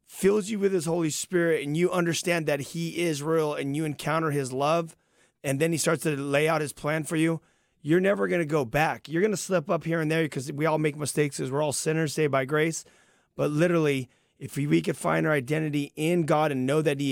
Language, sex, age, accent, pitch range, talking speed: English, male, 30-49, American, 135-165 Hz, 245 wpm